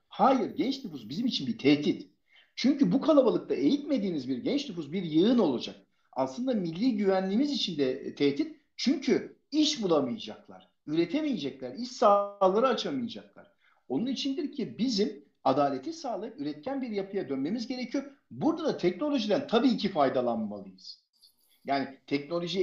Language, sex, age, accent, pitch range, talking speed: Turkish, male, 50-69, native, 155-245 Hz, 130 wpm